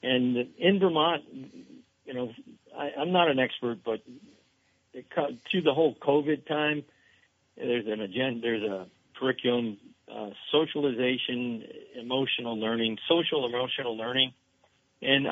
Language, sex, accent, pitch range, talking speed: English, male, American, 120-155 Hz, 115 wpm